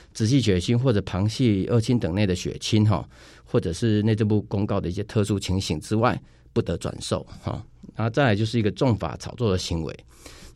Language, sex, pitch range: Chinese, male, 95-120 Hz